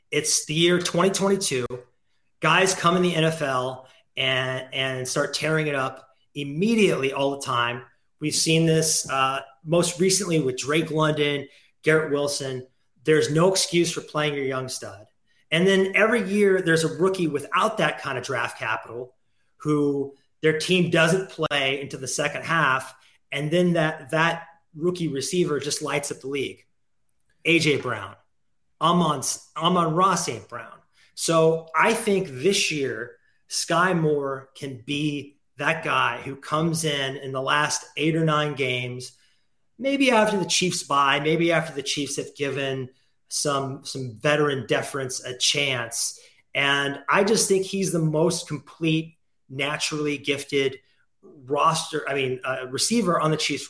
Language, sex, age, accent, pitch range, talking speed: English, male, 30-49, American, 135-170 Hz, 150 wpm